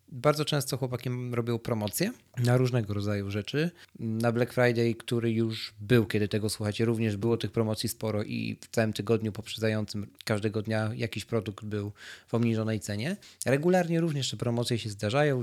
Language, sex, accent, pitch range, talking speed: Polish, male, native, 110-140 Hz, 165 wpm